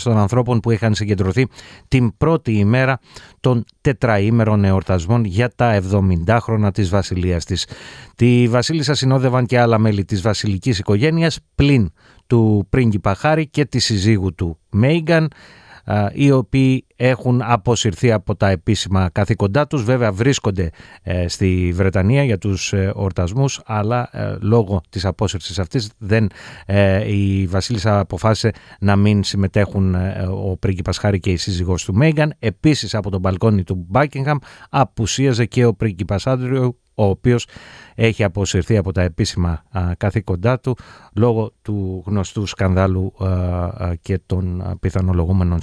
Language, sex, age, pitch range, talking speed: Greek, male, 30-49, 95-125 Hz, 140 wpm